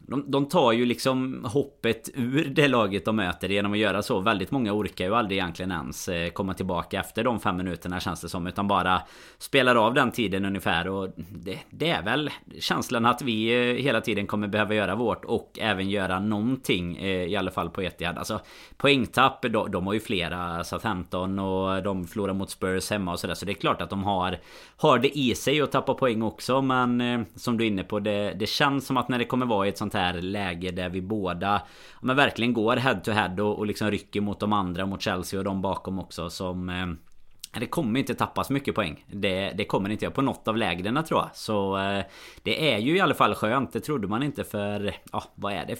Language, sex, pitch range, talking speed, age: Swedish, male, 95-120 Hz, 225 wpm, 30-49